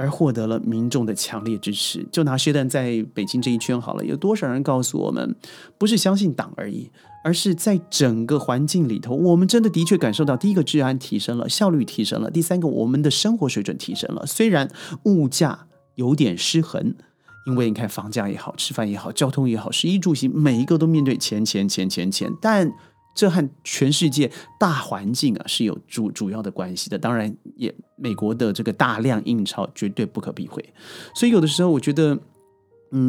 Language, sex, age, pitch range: Chinese, male, 30-49, 115-170 Hz